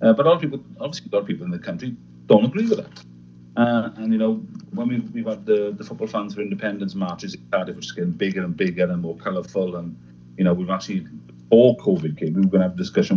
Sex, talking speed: male, 260 wpm